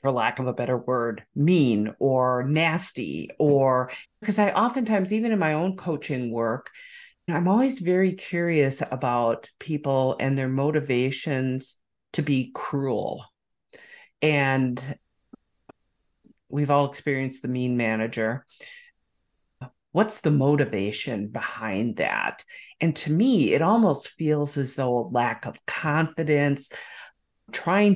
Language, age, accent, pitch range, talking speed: English, 50-69, American, 125-165 Hz, 120 wpm